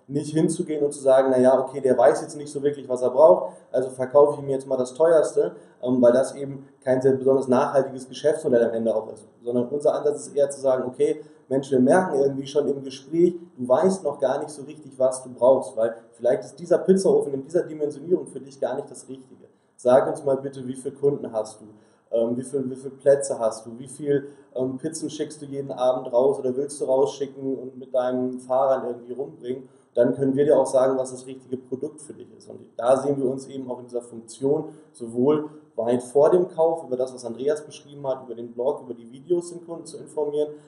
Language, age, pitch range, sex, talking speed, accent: German, 20-39, 125-145 Hz, male, 225 wpm, German